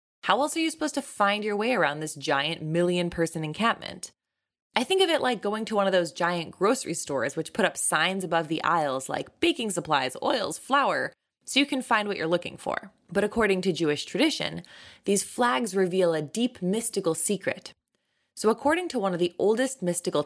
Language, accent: English, American